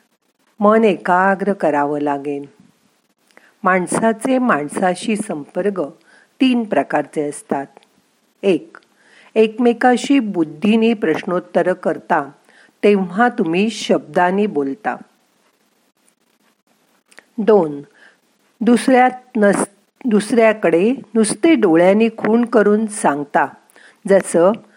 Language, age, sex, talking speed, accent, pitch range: Marathi, 50-69, female, 70 wpm, native, 170-225 Hz